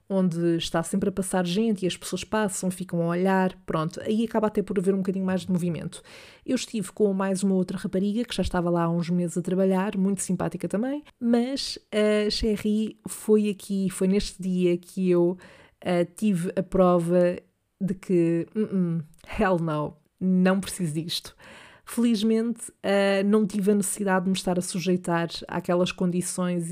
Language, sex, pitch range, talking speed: Portuguese, female, 175-205 Hz, 170 wpm